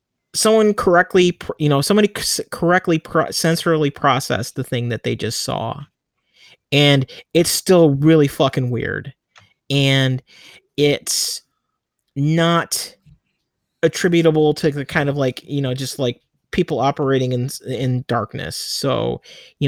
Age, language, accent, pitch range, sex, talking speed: 30-49, English, American, 130-160 Hz, male, 120 wpm